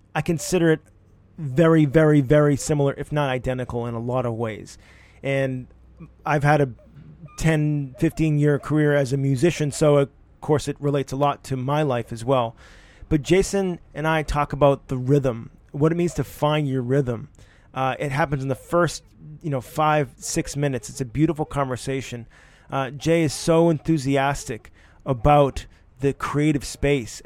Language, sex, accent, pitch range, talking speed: English, male, American, 125-150 Hz, 170 wpm